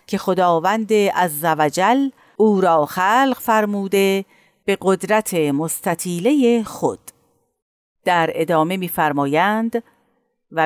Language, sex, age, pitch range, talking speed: Persian, female, 50-69, 160-235 Hz, 90 wpm